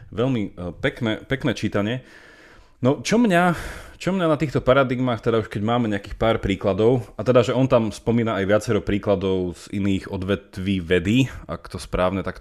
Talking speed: 175 wpm